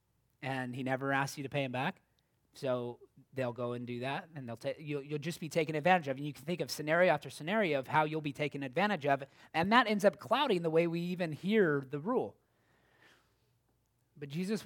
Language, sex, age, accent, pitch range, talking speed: English, male, 30-49, American, 125-160 Hz, 220 wpm